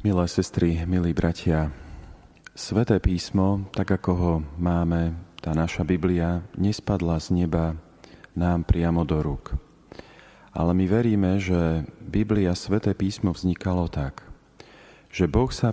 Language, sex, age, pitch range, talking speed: Slovak, male, 40-59, 85-100 Hz, 120 wpm